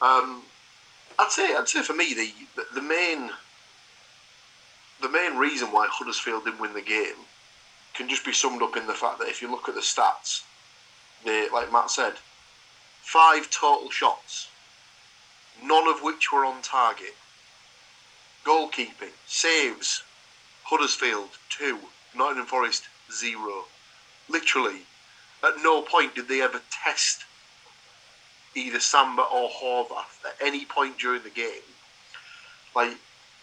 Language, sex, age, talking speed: English, male, 30-49, 130 wpm